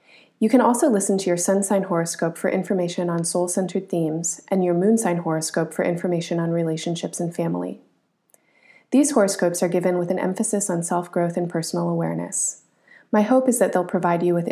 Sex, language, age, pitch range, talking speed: female, English, 30-49, 170-200 Hz, 185 wpm